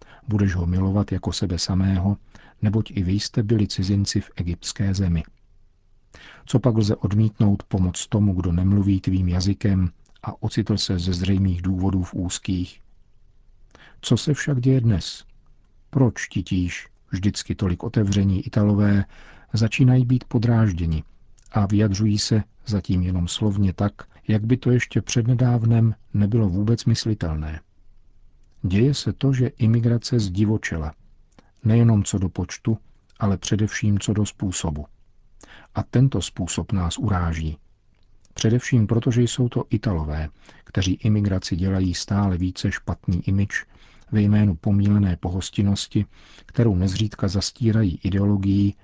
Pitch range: 95-110 Hz